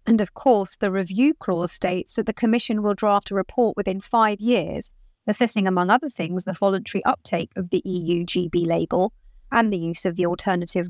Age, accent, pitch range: 30-49, British, 180-220 Hz